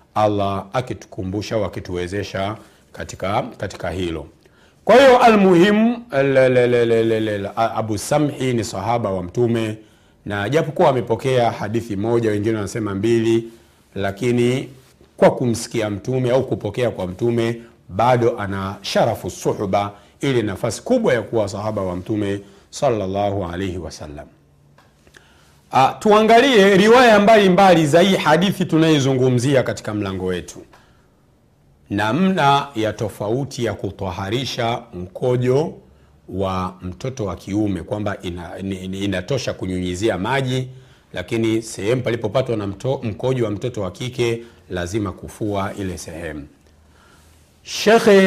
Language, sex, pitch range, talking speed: Swahili, male, 100-130 Hz, 110 wpm